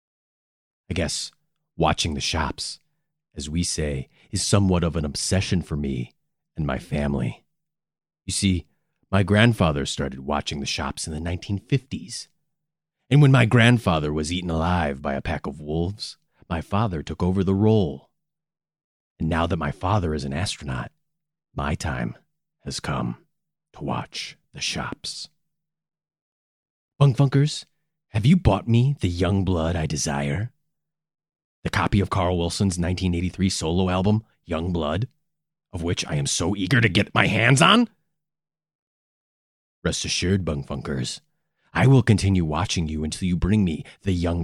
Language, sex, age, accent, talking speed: English, male, 30-49, American, 145 wpm